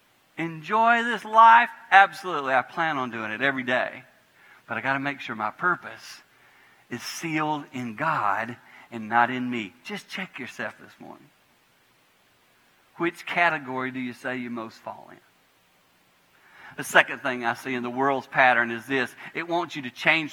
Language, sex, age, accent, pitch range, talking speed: English, male, 50-69, American, 135-185 Hz, 170 wpm